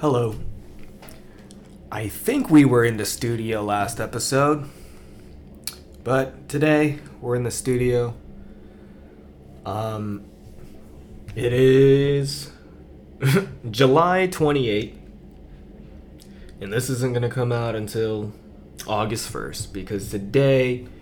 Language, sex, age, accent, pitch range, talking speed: English, male, 20-39, American, 95-130 Hz, 95 wpm